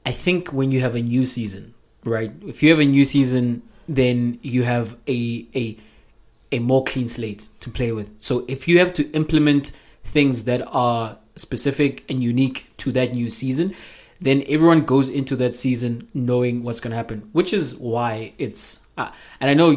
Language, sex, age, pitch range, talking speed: English, male, 20-39, 115-140 Hz, 190 wpm